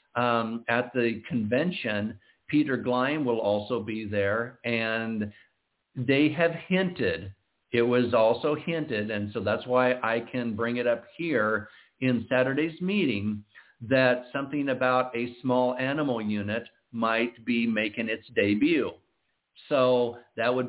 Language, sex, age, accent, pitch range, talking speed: English, male, 50-69, American, 115-150 Hz, 135 wpm